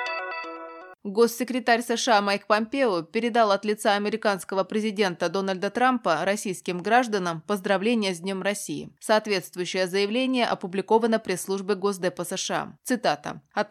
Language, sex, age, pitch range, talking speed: Russian, female, 20-39, 185-230 Hz, 110 wpm